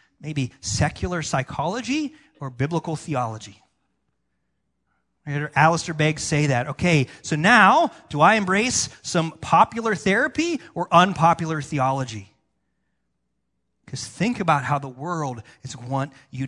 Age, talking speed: 30-49, 125 wpm